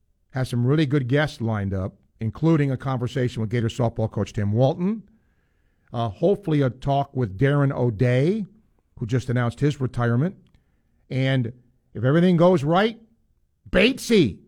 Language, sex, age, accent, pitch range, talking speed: English, male, 50-69, American, 105-140 Hz, 140 wpm